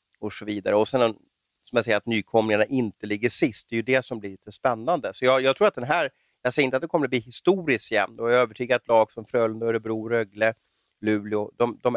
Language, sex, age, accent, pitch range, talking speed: Swedish, male, 30-49, native, 105-120 Hz, 255 wpm